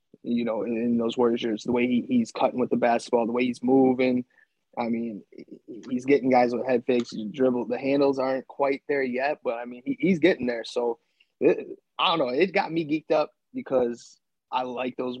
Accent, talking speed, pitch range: American, 215 wpm, 120-140 Hz